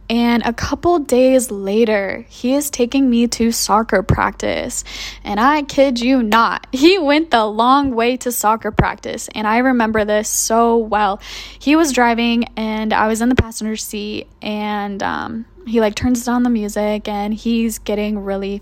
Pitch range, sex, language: 210-270 Hz, female, English